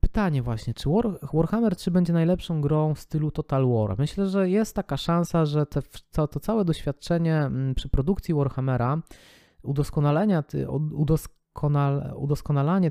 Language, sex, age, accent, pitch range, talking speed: Polish, male, 20-39, native, 130-155 Hz, 140 wpm